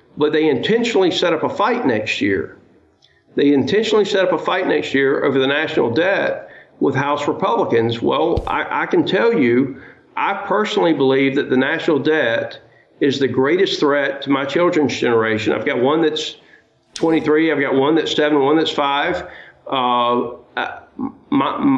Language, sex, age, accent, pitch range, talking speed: English, male, 50-69, American, 135-175 Hz, 165 wpm